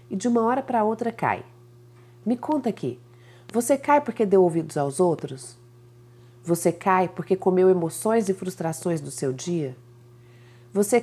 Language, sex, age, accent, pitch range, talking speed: Portuguese, female, 40-59, Brazilian, 125-210 Hz, 150 wpm